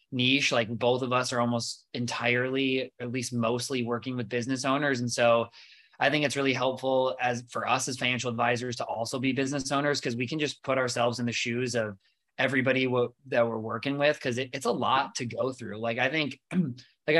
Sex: male